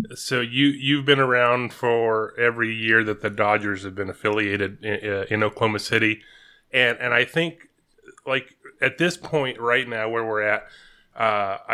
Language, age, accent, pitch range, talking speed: English, 30-49, American, 110-130 Hz, 170 wpm